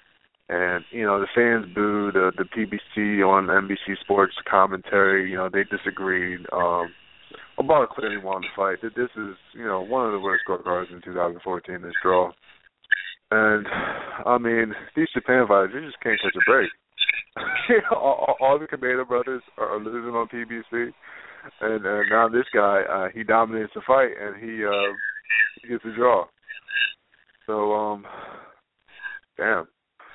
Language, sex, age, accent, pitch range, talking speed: English, male, 20-39, American, 100-150 Hz, 155 wpm